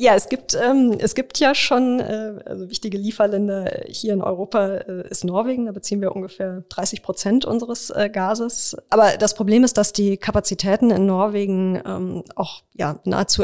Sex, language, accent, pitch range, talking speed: female, German, German, 185-215 Hz, 180 wpm